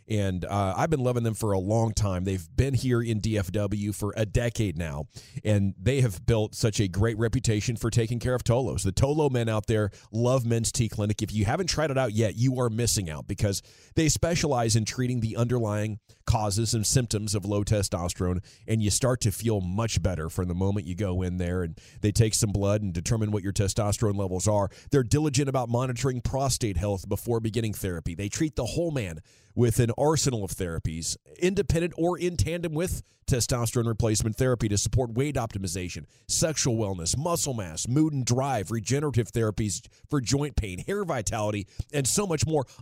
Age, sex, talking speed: 30-49, male, 195 wpm